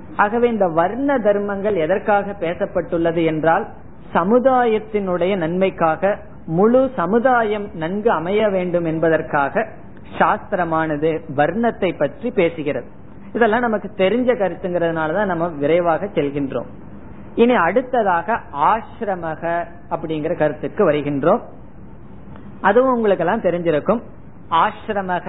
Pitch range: 160-215 Hz